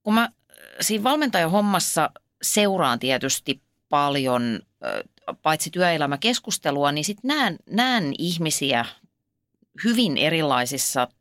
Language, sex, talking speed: Finnish, female, 80 wpm